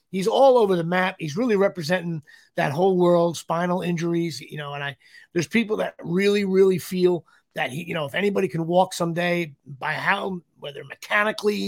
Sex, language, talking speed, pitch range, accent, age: male, English, 185 wpm, 150-190 Hz, American, 30-49